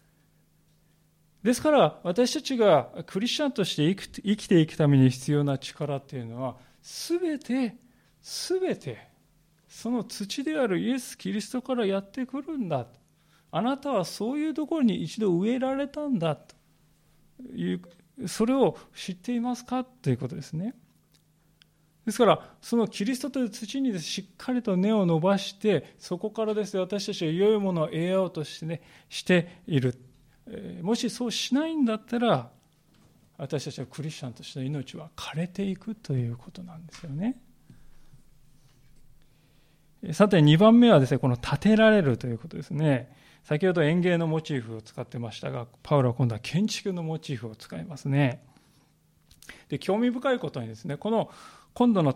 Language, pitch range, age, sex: Japanese, 145-220 Hz, 40-59, male